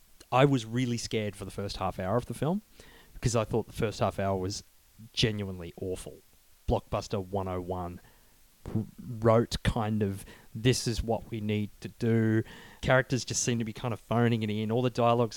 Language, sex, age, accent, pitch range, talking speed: English, male, 30-49, Australian, 100-125 Hz, 185 wpm